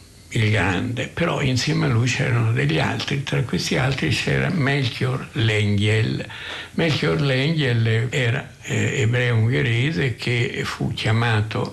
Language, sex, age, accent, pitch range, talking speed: Italian, male, 60-79, native, 110-135 Hz, 115 wpm